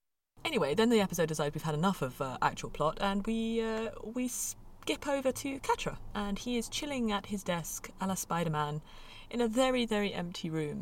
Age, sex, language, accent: 20-39, female, English, British